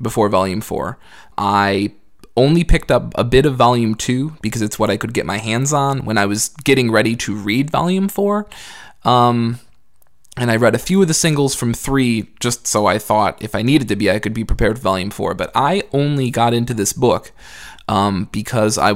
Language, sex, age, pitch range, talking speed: English, male, 20-39, 105-125 Hz, 210 wpm